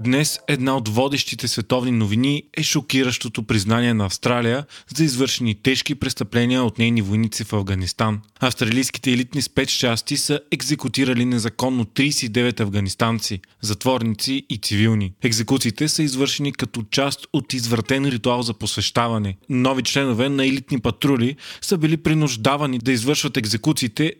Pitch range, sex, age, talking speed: 115-140 Hz, male, 20-39, 130 wpm